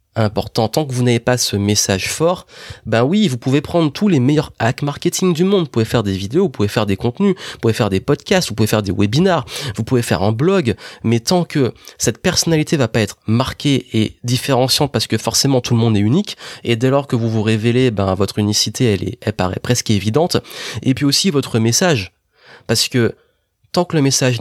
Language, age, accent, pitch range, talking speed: French, 30-49, French, 110-145 Hz, 225 wpm